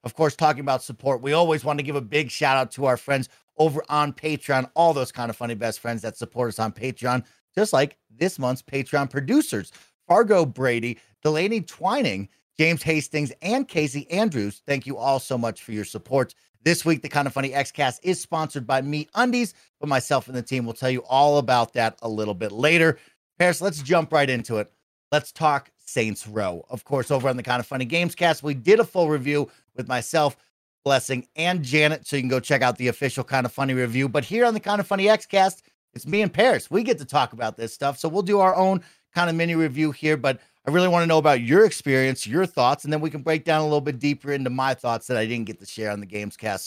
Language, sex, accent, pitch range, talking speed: English, male, American, 125-160 Hz, 235 wpm